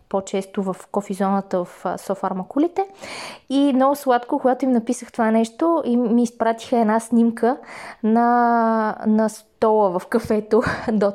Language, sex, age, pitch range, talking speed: Bulgarian, female, 20-39, 200-230 Hz, 130 wpm